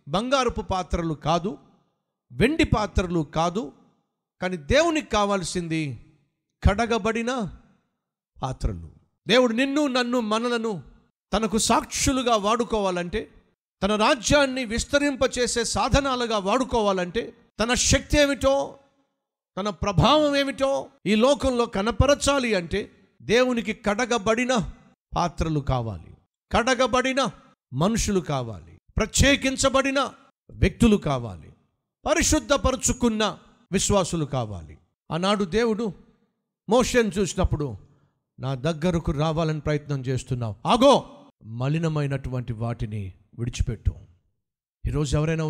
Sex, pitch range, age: male, 150-235 Hz, 50-69